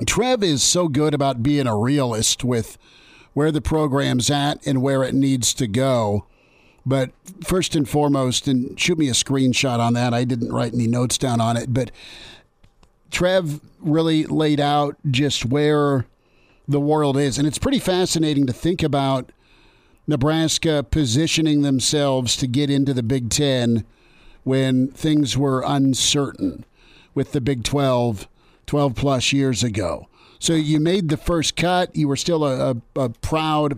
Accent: American